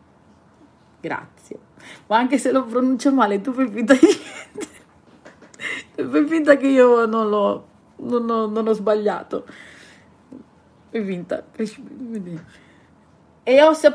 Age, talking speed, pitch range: 30-49, 125 wpm, 190-260 Hz